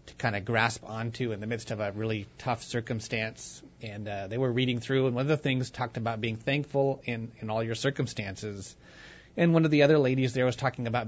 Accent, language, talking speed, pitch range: American, English, 235 wpm, 110-135 Hz